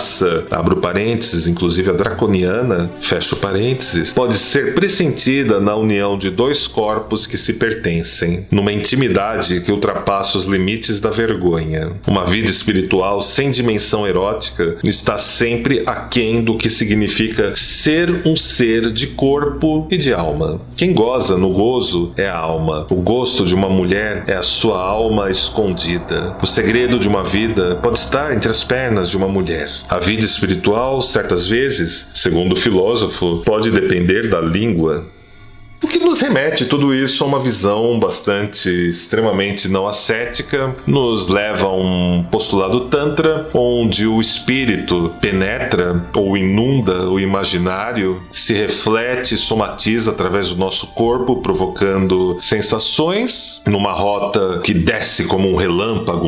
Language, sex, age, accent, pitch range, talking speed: Portuguese, male, 40-59, Brazilian, 95-120 Hz, 140 wpm